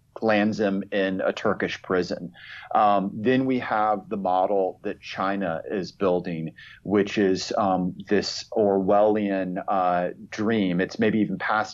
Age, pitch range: 30-49, 95-105 Hz